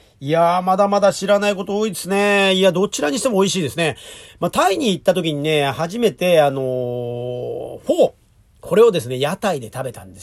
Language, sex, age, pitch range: Japanese, male, 40-59, 145-220 Hz